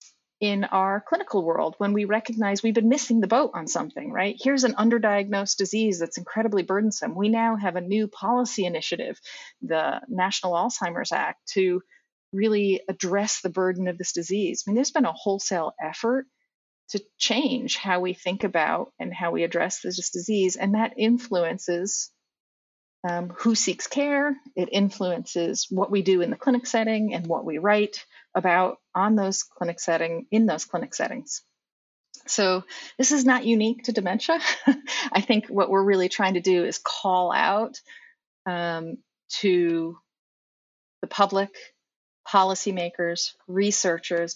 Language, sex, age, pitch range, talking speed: English, female, 40-59, 180-230 Hz, 155 wpm